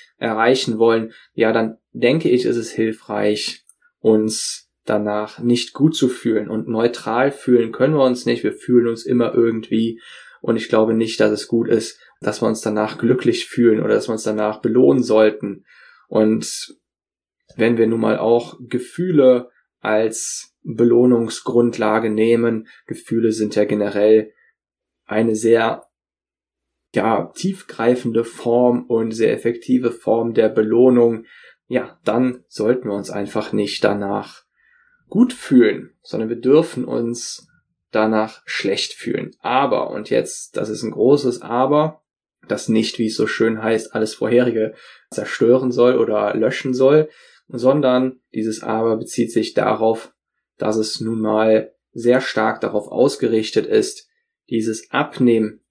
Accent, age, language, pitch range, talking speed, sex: German, 10-29, German, 110-125 Hz, 140 wpm, male